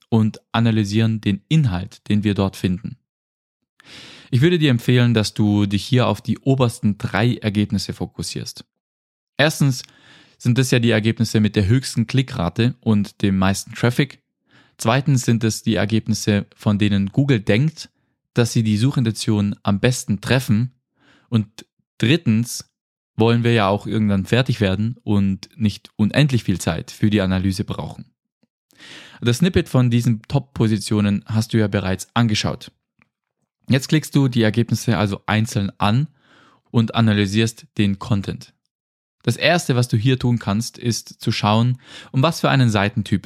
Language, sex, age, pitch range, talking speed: German, male, 20-39, 105-125 Hz, 150 wpm